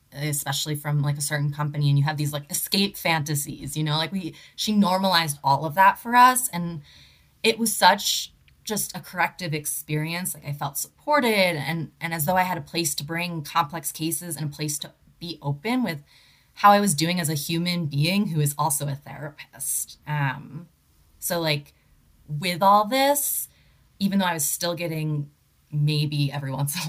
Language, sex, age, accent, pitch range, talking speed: English, female, 20-39, American, 145-175 Hz, 190 wpm